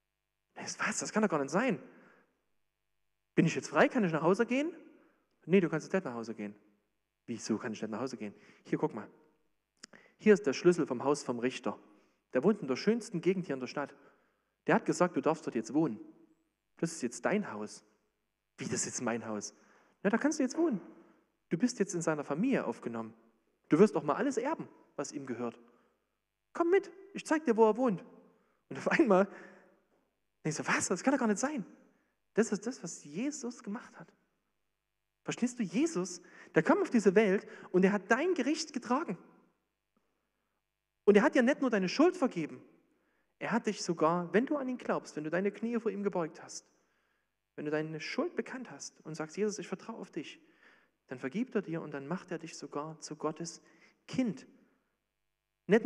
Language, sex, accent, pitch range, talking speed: German, male, German, 150-235 Hz, 200 wpm